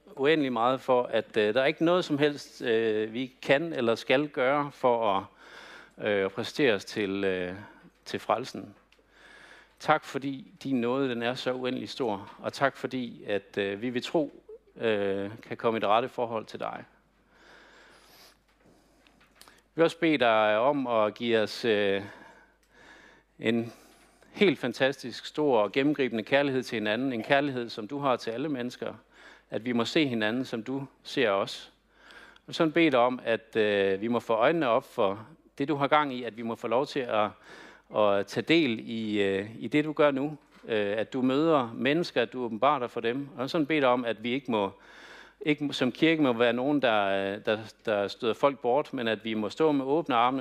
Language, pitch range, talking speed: Danish, 110-140 Hz, 190 wpm